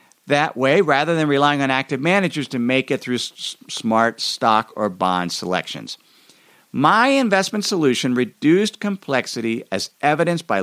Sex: male